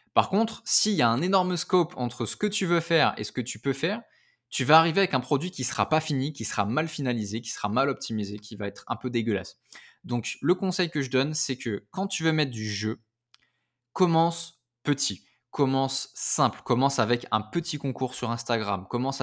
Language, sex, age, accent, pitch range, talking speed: French, male, 20-39, French, 115-150 Hz, 220 wpm